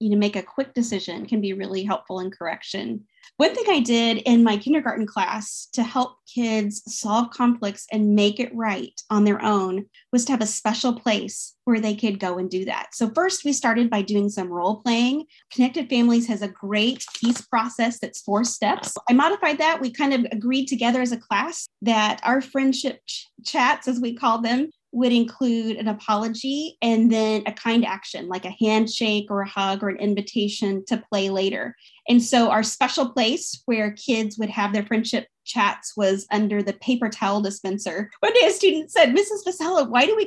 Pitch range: 210-270 Hz